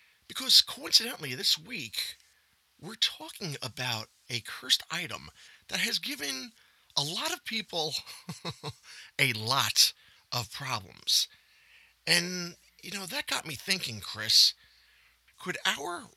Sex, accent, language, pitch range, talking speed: male, American, English, 120-185 Hz, 115 wpm